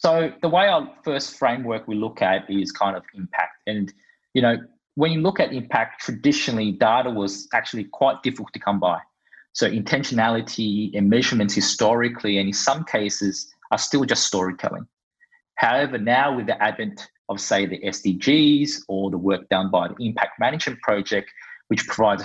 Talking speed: 170 wpm